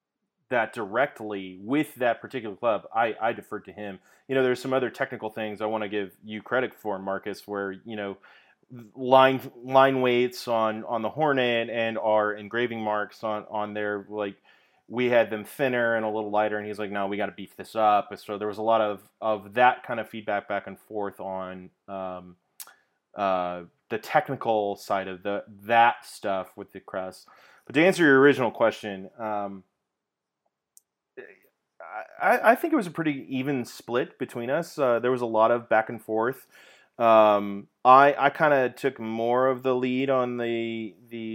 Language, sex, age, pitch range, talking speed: English, male, 30-49, 105-130 Hz, 190 wpm